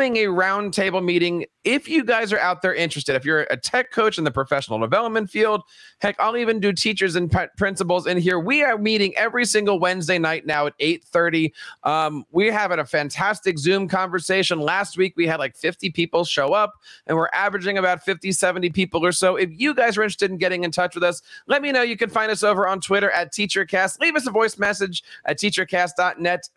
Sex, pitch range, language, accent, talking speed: male, 165-210 Hz, English, American, 215 wpm